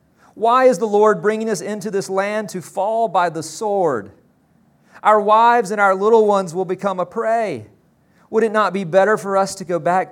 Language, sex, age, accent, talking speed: English, male, 40-59, American, 200 wpm